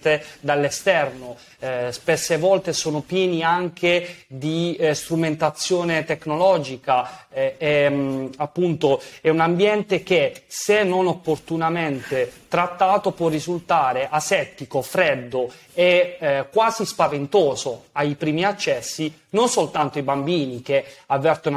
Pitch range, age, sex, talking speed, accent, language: 140-175 Hz, 30-49, male, 110 wpm, native, Italian